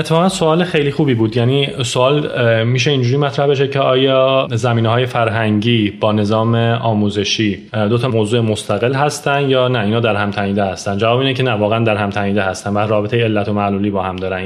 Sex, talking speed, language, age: male, 195 wpm, Persian, 30-49